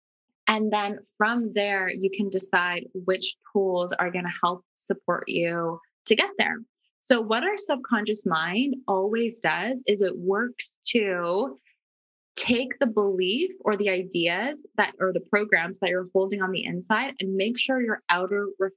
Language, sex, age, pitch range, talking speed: English, female, 20-39, 185-220 Hz, 160 wpm